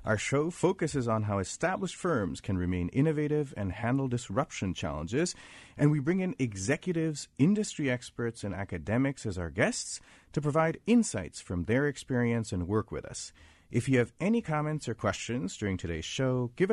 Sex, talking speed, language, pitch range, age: male, 170 wpm, English, 100-150 Hz, 40-59